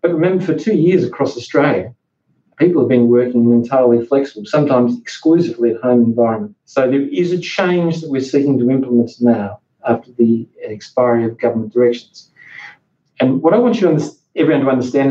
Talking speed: 185 wpm